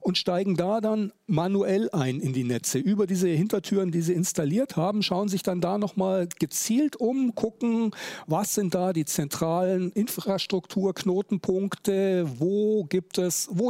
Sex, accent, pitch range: male, German, 155-200 Hz